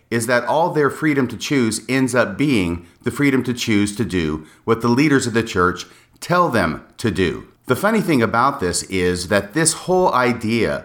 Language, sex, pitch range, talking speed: English, male, 100-135 Hz, 200 wpm